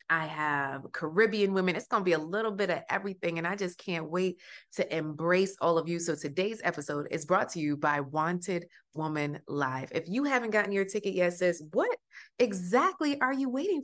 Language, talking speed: English, 205 wpm